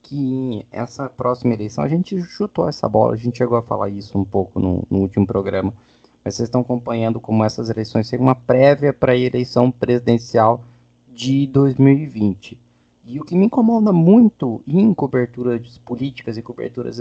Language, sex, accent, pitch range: Portuguese, male, Brazilian, 115-150 Hz